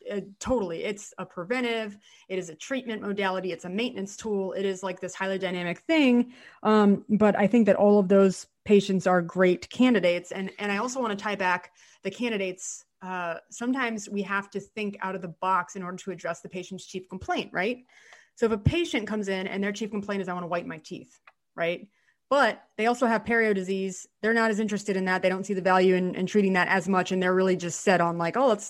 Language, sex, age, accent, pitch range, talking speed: English, female, 30-49, American, 185-220 Hz, 235 wpm